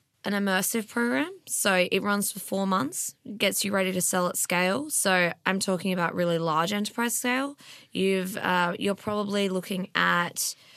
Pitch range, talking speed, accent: 170-195 Hz, 180 wpm, Australian